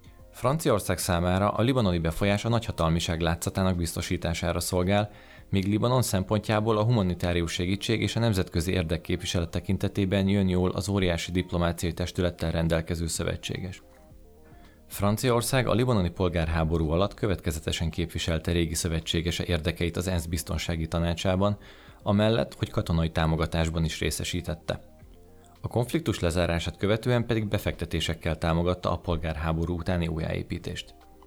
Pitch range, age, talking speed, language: 85-105 Hz, 30-49, 115 wpm, Hungarian